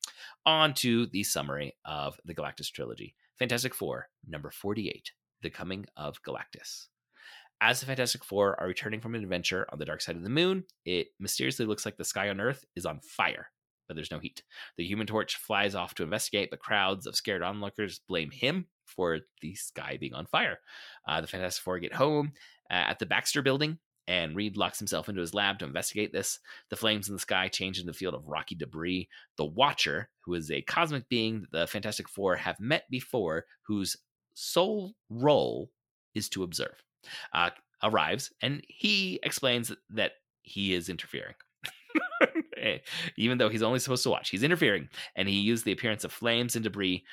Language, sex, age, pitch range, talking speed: English, male, 30-49, 95-130 Hz, 190 wpm